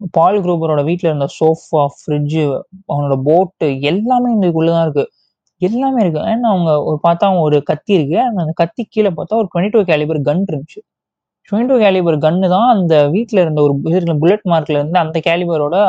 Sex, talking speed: male, 170 wpm